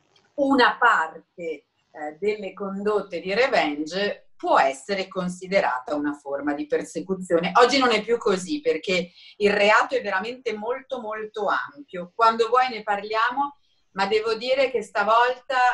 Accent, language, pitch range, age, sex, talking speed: native, Italian, 170-220 Hz, 40-59, female, 135 wpm